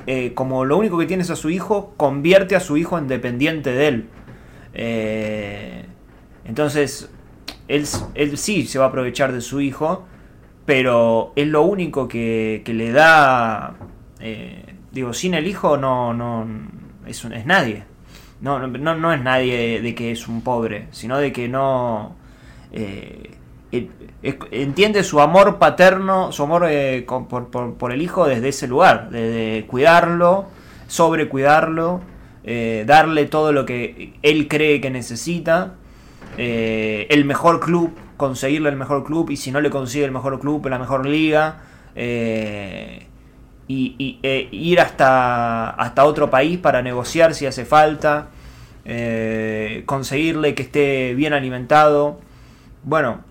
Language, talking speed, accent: Spanish, 145 wpm, Argentinian